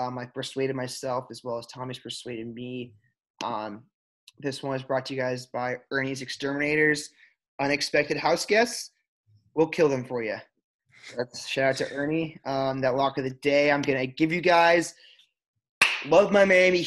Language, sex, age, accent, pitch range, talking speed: English, male, 20-39, American, 130-155 Hz, 180 wpm